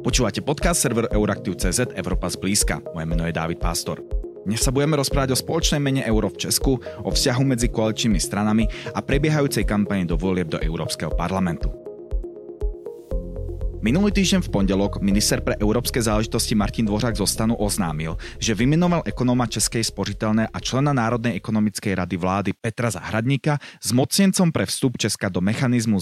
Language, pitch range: Czech, 100-135 Hz